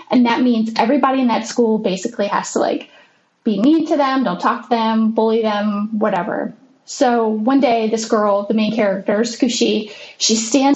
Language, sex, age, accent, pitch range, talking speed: English, female, 10-29, American, 215-280 Hz, 185 wpm